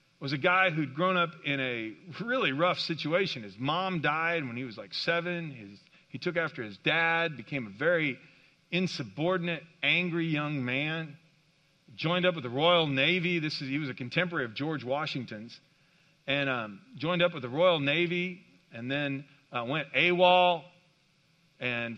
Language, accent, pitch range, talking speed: English, American, 135-170 Hz, 165 wpm